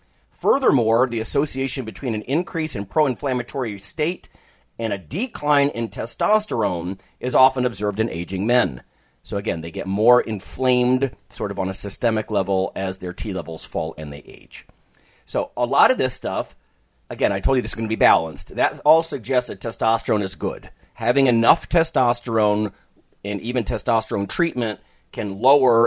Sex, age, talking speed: male, 40-59, 165 wpm